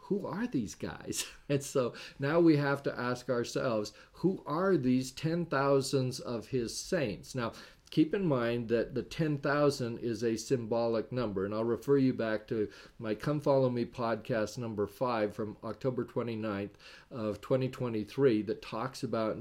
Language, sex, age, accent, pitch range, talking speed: English, male, 40-59, American, 110-135 Hz, 160 wpm